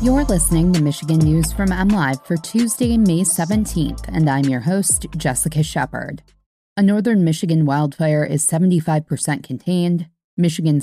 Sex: female